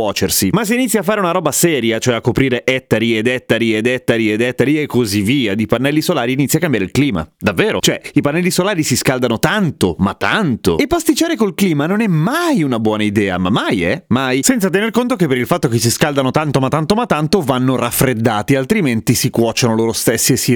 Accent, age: native, 30-49